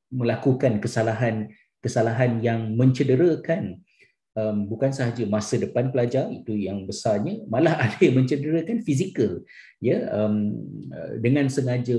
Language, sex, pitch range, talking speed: Malay, male, 105-130 Hz, 105 wpm